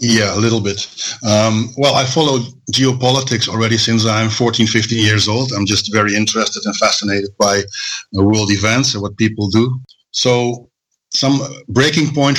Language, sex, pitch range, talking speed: English, male, 110-125 Hz, 160 wpm